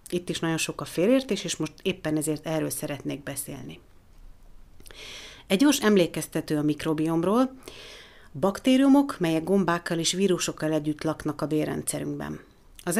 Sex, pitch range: female, 150-190 Hz